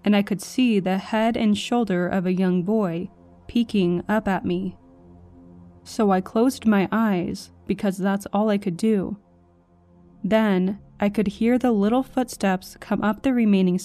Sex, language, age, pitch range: female, English, 20-39, 175-215 Hz